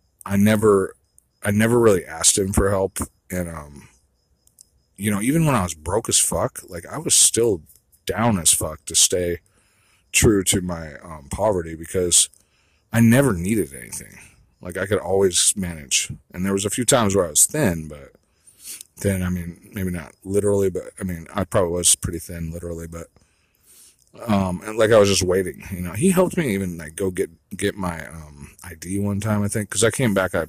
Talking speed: 195 wpm